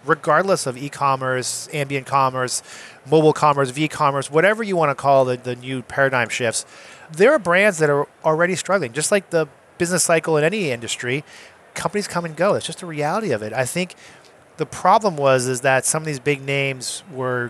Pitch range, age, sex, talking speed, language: 125-155 Hz, 30-49, male, 190 wpm, English